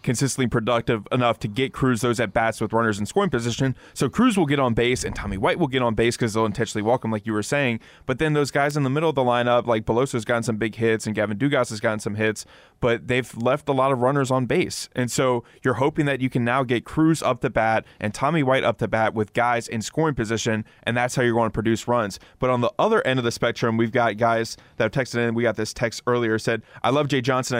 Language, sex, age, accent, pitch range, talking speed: English, male, 20-39, American, 115-135 Hz, 275 wpm